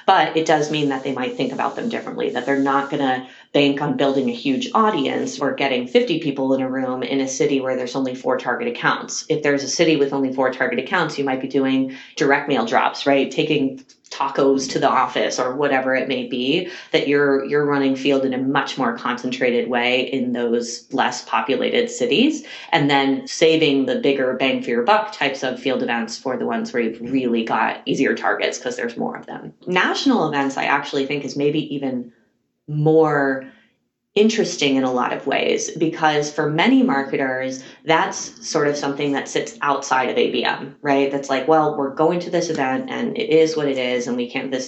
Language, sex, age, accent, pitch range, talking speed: English, female, 30-49, American, 130-155 Hz, 210 wpm